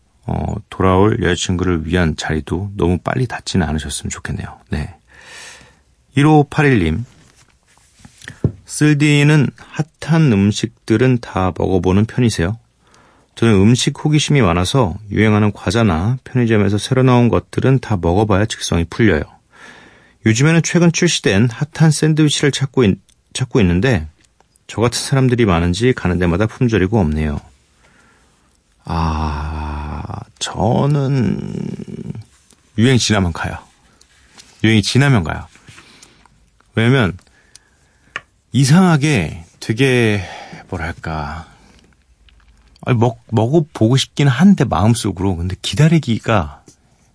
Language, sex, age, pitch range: Korean, male, 40-59, 85-130 Hz